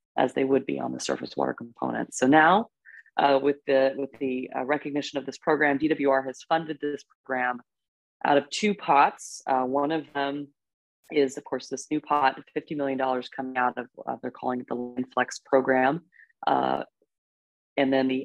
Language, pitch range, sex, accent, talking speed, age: English, 125-145 Hz, female, American, 185 wpm, 30-49